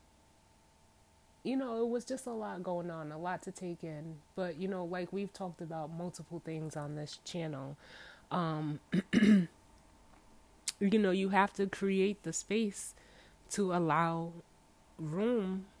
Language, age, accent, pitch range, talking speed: English, 20-39, American, 150-185 Hz, 145 wpm